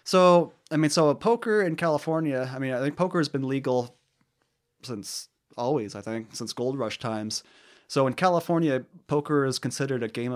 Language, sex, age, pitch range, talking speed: English, male, 30-49, 110-140 Hz, 185 wpm